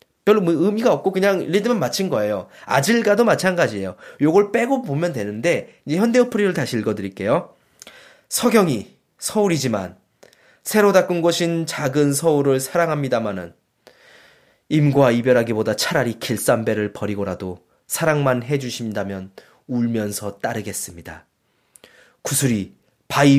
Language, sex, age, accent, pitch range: Korean, male, 20-39, native, 110-165 Hz